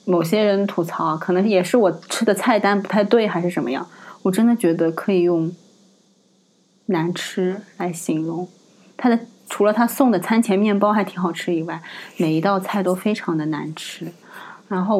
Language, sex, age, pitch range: Chinese, female, 20-39, 170-200 Hz